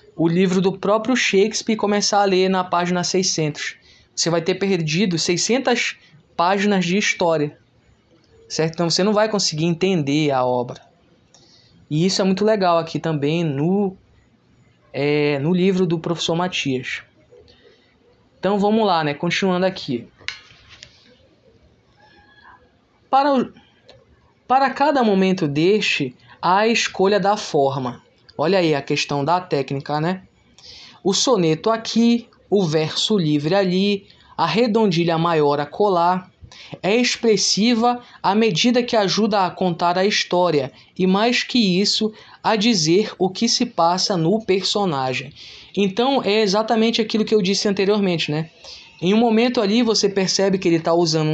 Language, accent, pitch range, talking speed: Portuguese, Brazilian, 160-210 Hz, 135 wpm